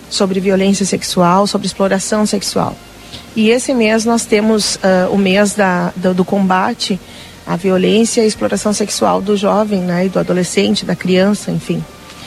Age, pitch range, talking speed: 40-59, 190-225 Hz, 160 wpm